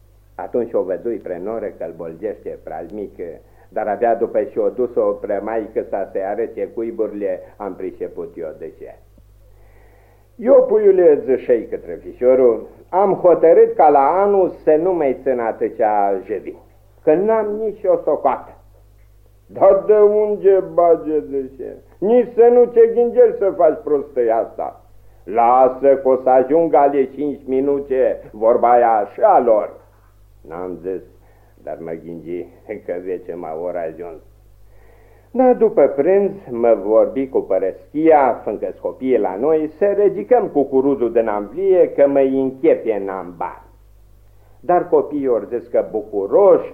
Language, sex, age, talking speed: Romanian, male, 50-69, 140 wpm